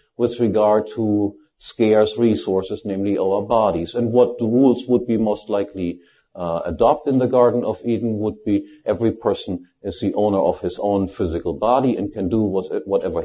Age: 50-69